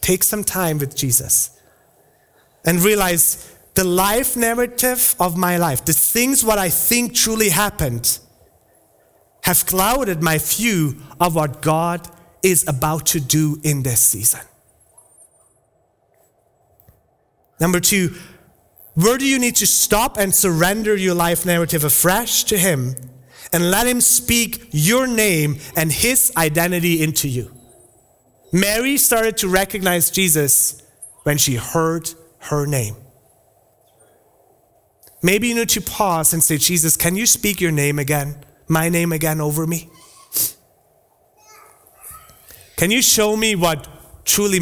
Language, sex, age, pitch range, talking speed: English, male, 30-49, 155-205 Hz, 130 wpm